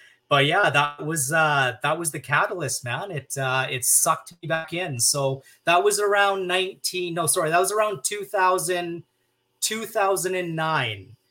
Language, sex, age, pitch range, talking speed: English, male, 30-49, 130-165 Hz, 155 wpm